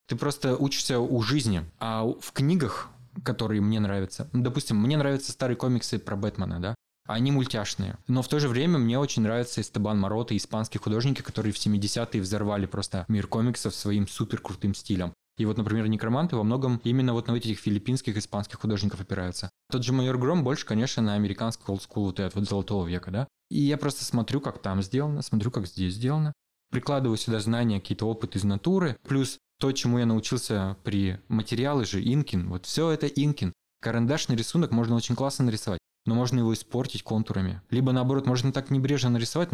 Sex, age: male, 20-39